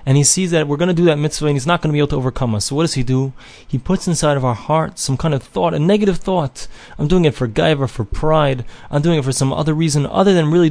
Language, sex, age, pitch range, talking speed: English, male, 20-39, 135-175 Hz, 310 wpm